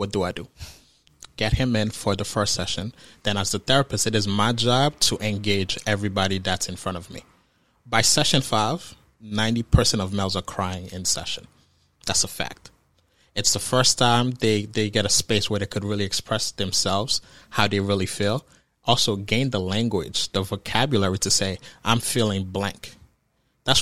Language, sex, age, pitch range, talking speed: English, male, 20-39, 100-125 Hz, 180 wpm